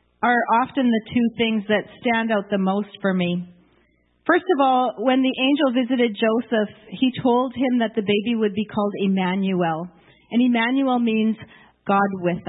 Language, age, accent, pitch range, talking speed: English, 40-59, American, 195-250 Hz, 170 wpm